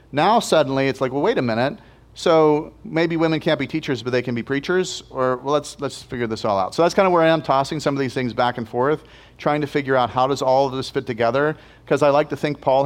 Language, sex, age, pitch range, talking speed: English, male, 40-59, 125-155 Hz, 275 wpm